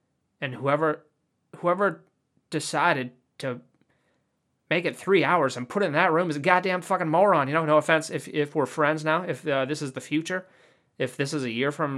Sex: male